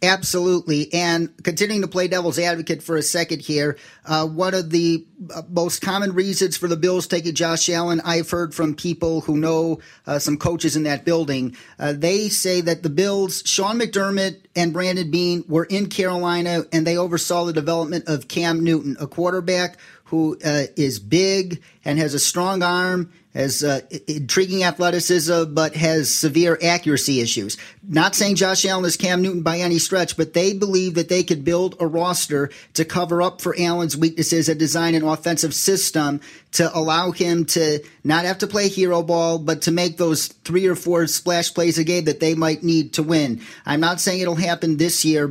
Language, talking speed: English, 185 wpm